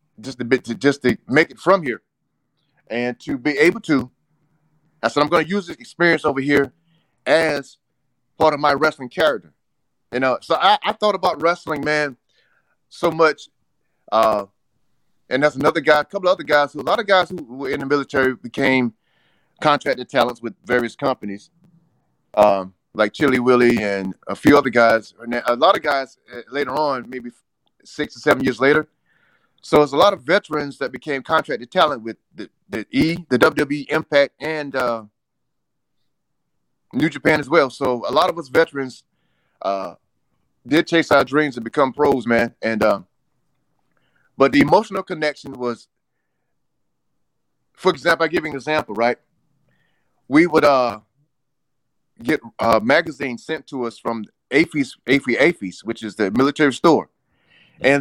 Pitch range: 120-155 Hz